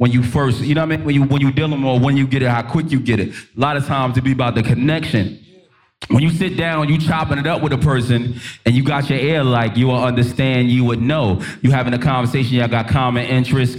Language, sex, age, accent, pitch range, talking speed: English, male, 20-39, American, 120-145 Hz, 275 wpm